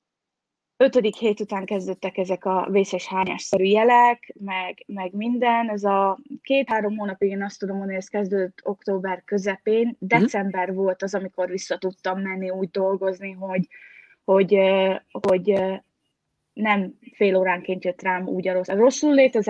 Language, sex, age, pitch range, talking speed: Hungarian, female, 20-39, 190-235 Hz, 150 wpm